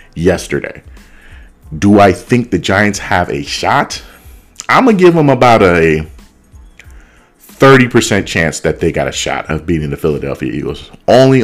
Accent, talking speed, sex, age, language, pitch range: American, 145 wpm, male, 30-49, English, 85-105 Hz